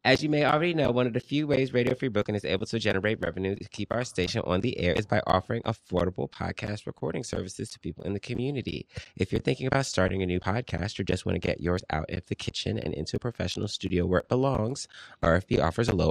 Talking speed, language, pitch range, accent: 250 wpm, English, 85-120 Hz, American